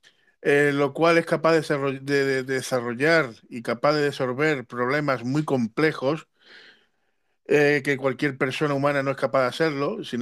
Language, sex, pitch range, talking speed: Spanish, male, 130-170 Hz, 160 wpm